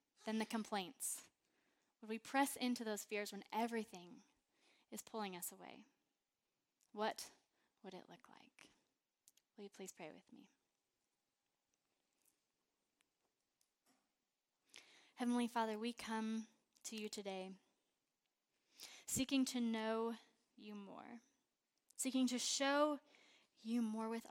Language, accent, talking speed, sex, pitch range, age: English, American, 110 wpm, female, 210-245 Hz, 20-39